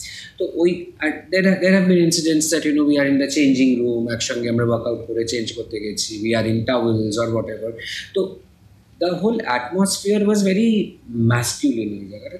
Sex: male